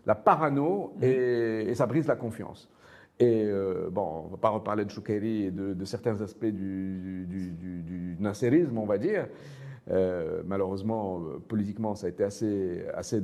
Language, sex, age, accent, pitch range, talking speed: French, male, 50-69, French, 100-155 Hz, 170 wpm